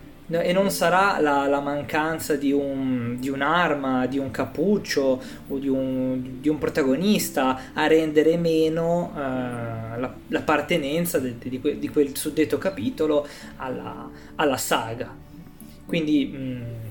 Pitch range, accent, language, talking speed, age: 125-155 Hz, native, Italian, 110 wpm, 20-39